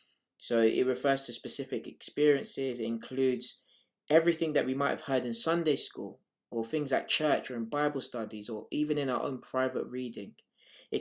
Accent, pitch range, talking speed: British, 115-150 Hz, 180 wpm